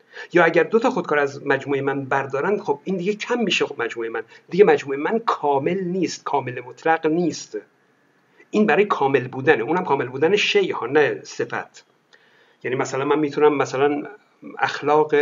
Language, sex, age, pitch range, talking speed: Persian, male, 50-69, 150-220 Hz, 165 wpm